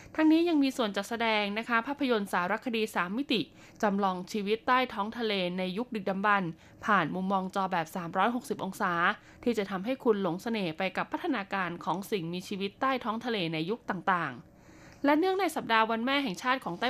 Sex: female